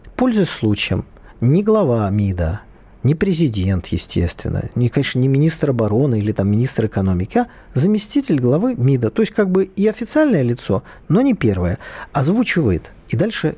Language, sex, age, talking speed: Russian, male, 40-59, 150 wpm